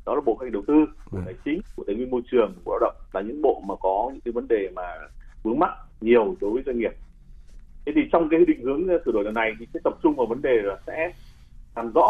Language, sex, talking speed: Vietnamese, male, 265 wpm